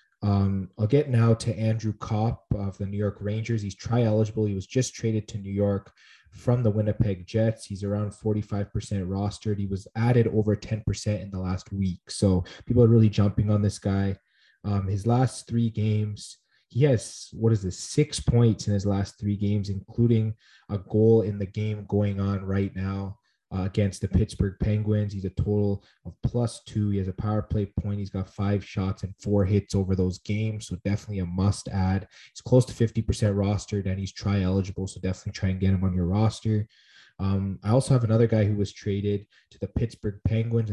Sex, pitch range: male, 100-110 Hz